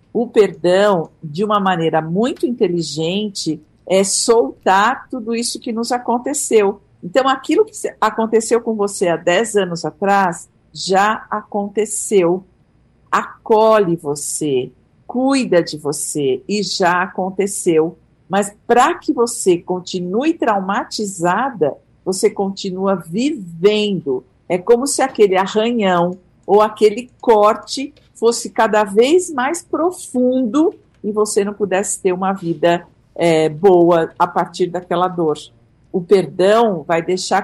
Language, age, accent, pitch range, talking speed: Portuguese, 50-69, Brazilian, 175-230 Hz, 115 wpm